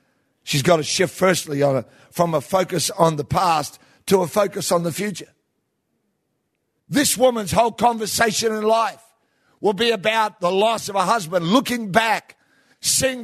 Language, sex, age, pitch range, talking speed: English, male, 50-69, 190-240 Hz, 155 wpm